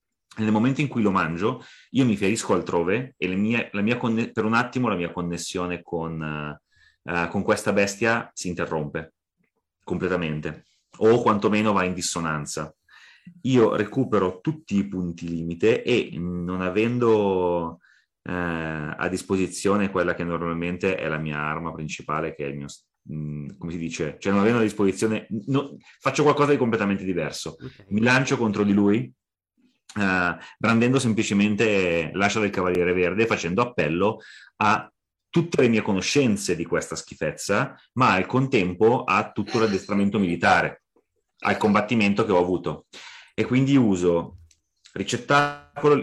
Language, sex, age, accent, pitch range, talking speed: Italian, male, 30-49, native, 90-115 Hz, 145 wpm